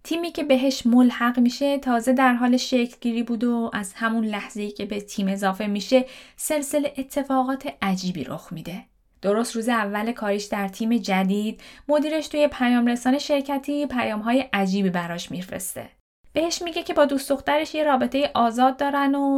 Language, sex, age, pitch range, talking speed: Persian, female, 10-29, 200-265 Hz, 160 wpm